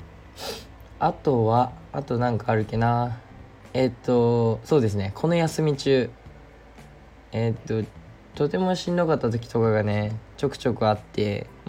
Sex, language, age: male, Japanese, 20-39